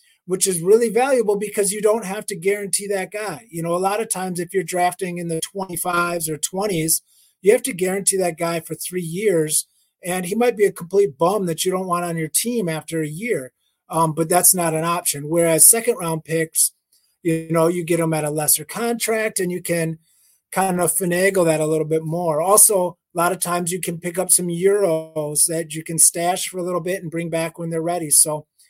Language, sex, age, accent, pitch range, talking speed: English, male, 30-49, American, 165-210 Hz, 225 wpm